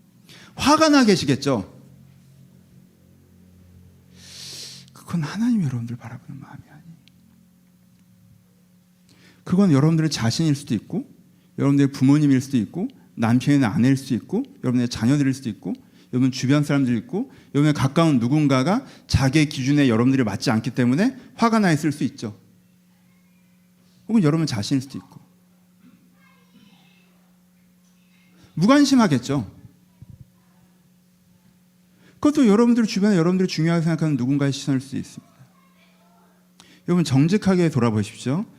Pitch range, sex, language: 135-180 Hz, male, Korean